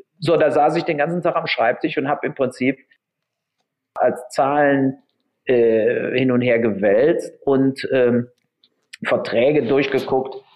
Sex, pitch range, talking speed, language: male, 120-150 Hz, 135 wpm, German